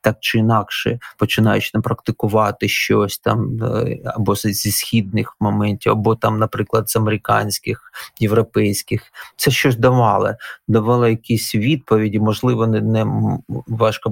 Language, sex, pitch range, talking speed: Ukrainian, male, 110-125 Hz, 115 wpm